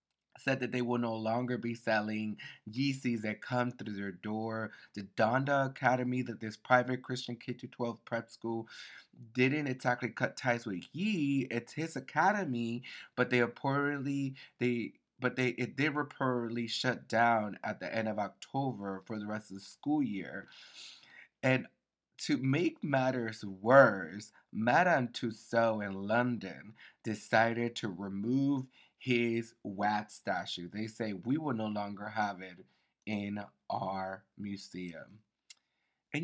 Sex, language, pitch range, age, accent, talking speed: male, English, 105-135 Hz, 30-49, American, 140 wpm